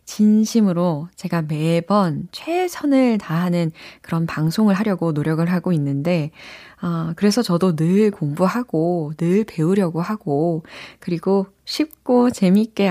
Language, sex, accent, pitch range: Korean, female, native, 155-210 Hz